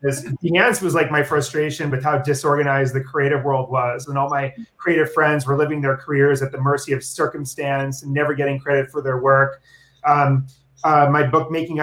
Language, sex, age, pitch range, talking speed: English, male, 30-49, 140-155 Hz, 200 wpm